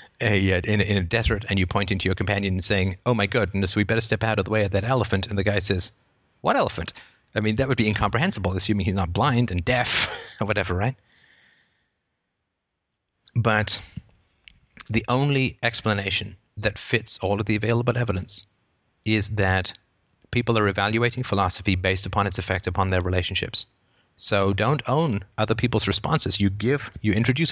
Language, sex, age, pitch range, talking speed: English, male, 30-49, 95-115 Hz, 180 wpm